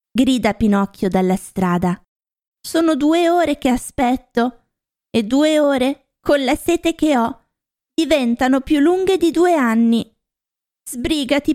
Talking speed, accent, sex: 125 wpm, native, female